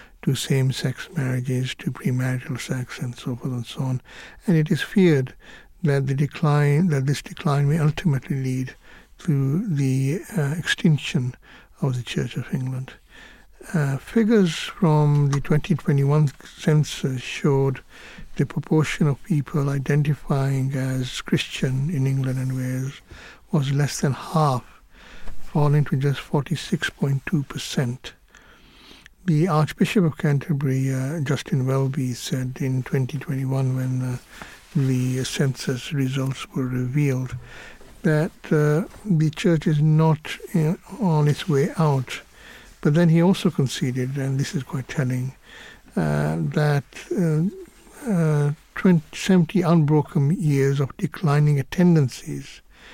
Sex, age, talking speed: male, 60-79, 120 wpm